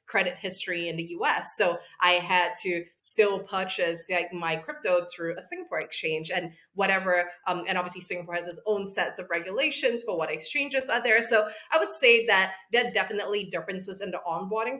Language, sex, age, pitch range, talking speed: English, female, 20-39, 175-205 Hz, 190 wpm